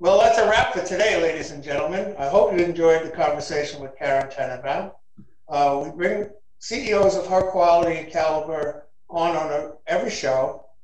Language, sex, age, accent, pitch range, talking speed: English, male, 60-79, American, 150-180 Hz, 175 wpm